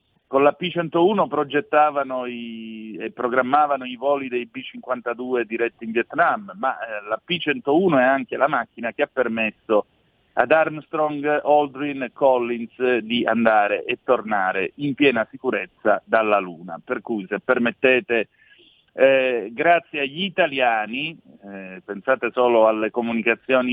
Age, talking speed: 40-59, 130 wpm